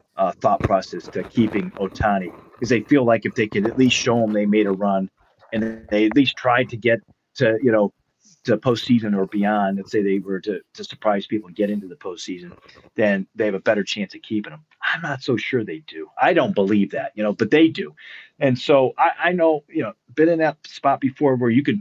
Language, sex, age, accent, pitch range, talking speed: English, male, 40-59, American, 105-140 Hz, 240 wpm